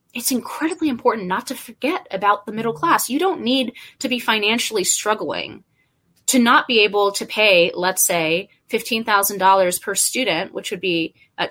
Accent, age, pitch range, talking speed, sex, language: American, 20-39, 185-250 Hz, 165 wpm, female, English